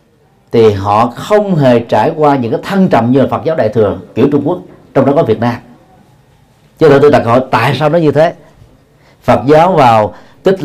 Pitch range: 125-160 Hz